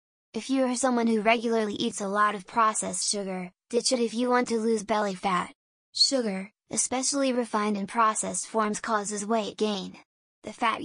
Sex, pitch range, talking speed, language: female, 205-235 Hz, 175 wpm, English